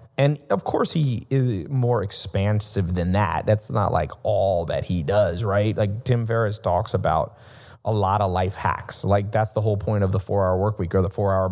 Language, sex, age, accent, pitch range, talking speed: English, male, 30-49, American, 105-130 Hz, 210 wpm